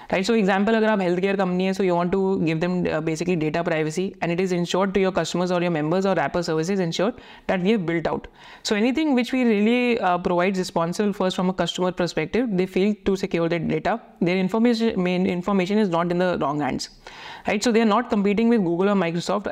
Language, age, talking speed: Hindi, 30-49, 235 wpm